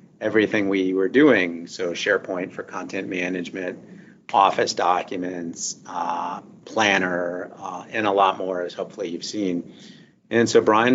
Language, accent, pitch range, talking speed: Italian, American, 95-110 Hz, 135 wpm